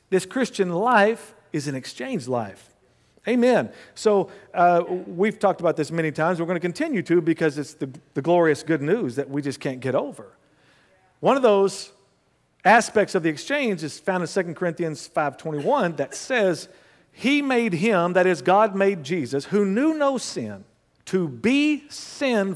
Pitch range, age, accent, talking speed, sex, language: 160-220 Hz, 50-69, American, 170 wpm, male, English